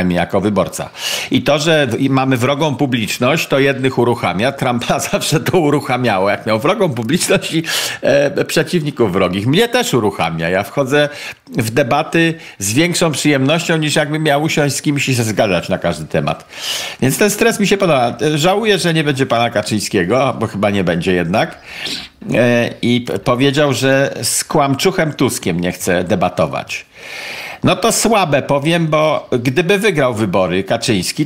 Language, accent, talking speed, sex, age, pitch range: Polish, native, 160 wpm, male, 50-69, 130-185 Hz